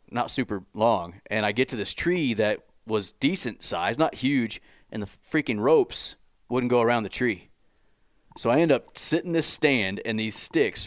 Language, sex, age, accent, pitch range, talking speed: English, male, 30-49, American, 100-115 Hz, 195 wpm